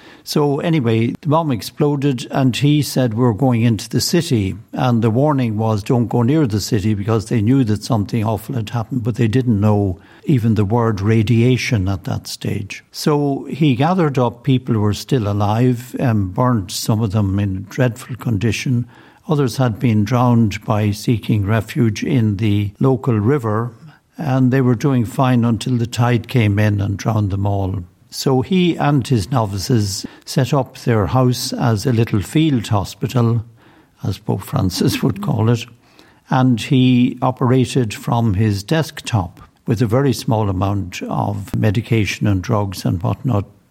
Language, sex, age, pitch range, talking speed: English, male, 60-79, 105-130 Hz, 165 wpm